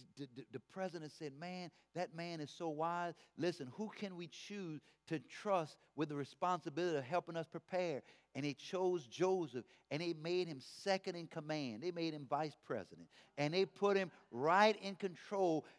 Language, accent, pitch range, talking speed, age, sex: English, American, 140-185 Hz, 175 wpm, 50-69, male